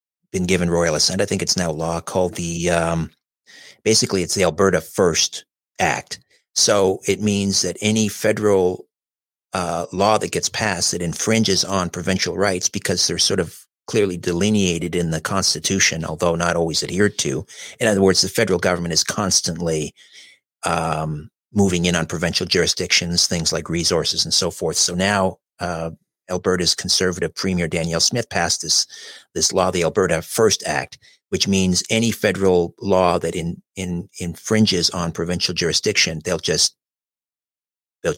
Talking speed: 155 wpm